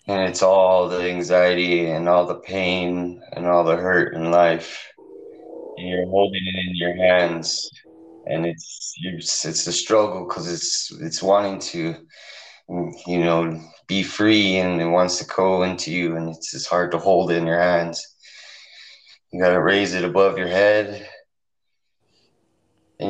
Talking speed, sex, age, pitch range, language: 160 wpm, male, 20-39, 90-110 Hz, English